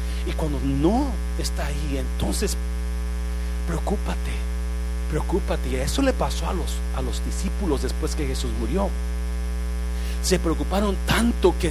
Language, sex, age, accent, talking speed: Spanish, male, 40-59, Mexican, 130 wpm